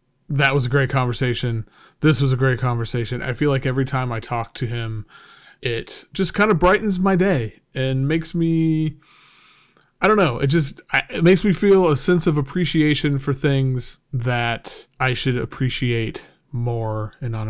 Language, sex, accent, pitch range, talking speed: English, male, American, 130-165 Hz, 170 wpm